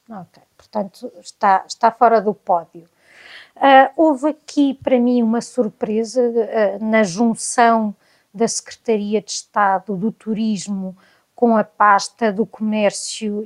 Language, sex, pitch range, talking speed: Portuguese, female, 215-250 Hz, 115 wpm